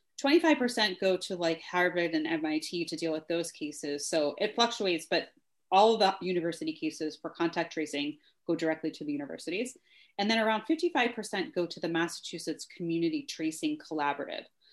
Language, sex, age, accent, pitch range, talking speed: English, female, 30-49, American, 160-210 Hz, 165 wpm